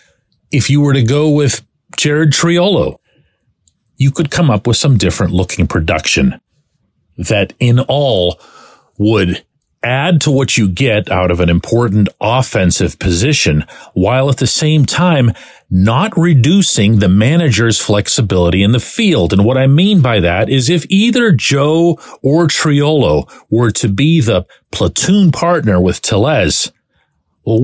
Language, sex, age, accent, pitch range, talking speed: English, male, 40-59, American, 100-150 Hz, 145 wpm